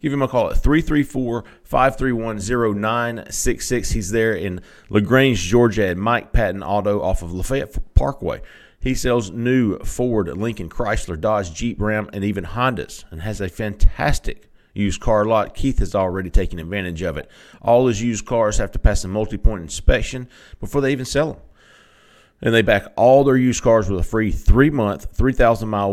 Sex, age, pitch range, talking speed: male, 40-59, 100-130 Hz, 165 wpm